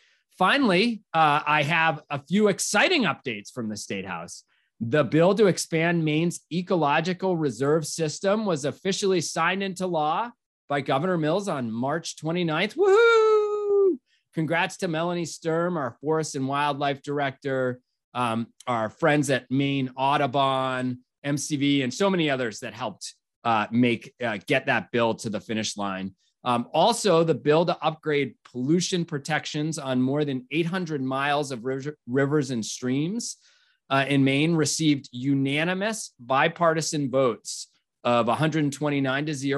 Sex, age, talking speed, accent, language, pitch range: male, 30-49, 135 wpm, American, English, 130-165 Hz